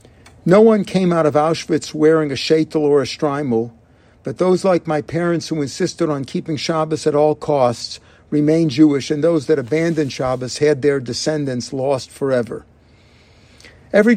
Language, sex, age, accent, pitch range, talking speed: English, male, 50-69, American, 135-160 Hz, 160 wpm